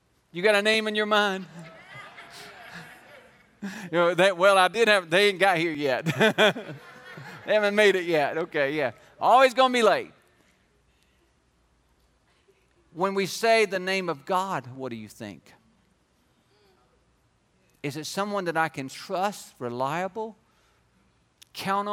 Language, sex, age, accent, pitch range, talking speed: English, male, 40-59, American, 130-195 Hz, 140 wpm